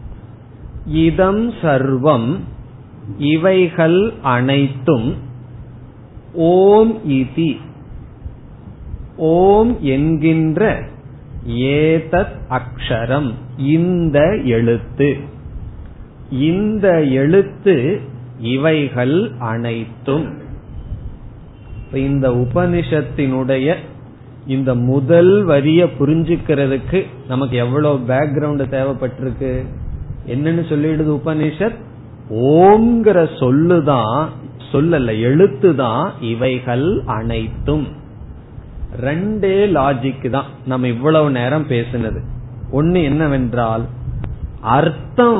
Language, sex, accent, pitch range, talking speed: Tamil, male, native, 120-160 Hz, 45 wpm